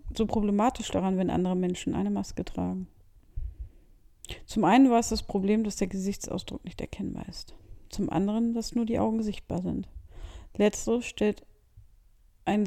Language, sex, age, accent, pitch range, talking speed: German, female, 40-59, German, 170-215 Hz, 150 wpm